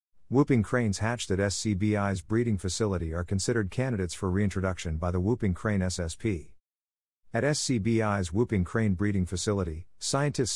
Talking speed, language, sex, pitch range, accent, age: 135 wpm, English, male, 90-115 Hz, American, 50-69